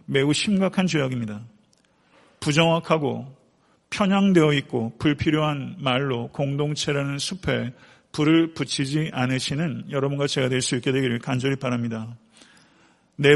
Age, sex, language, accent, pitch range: 40-59, male, Korean, native, 130-160 Hz